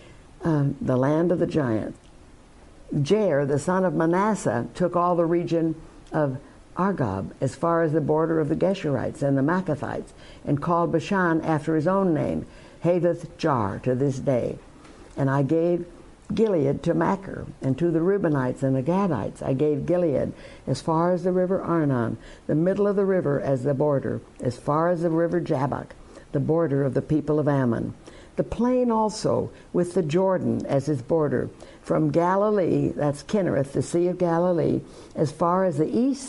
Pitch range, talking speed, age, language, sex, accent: 140-180 Hz, 170 wpm, 60-79, English, female, American